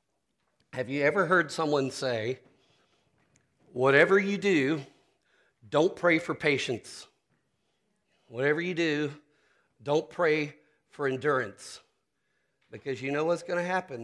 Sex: male